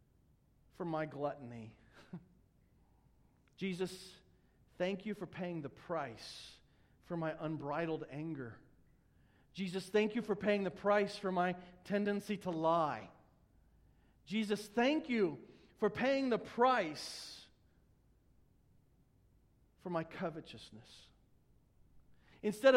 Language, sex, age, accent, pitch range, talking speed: English, male, 40-59, American, 160-230 Hz, 100 wpm